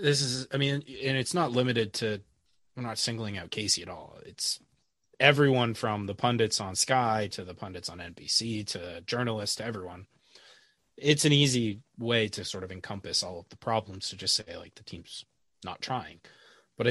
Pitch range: 100-125 Hz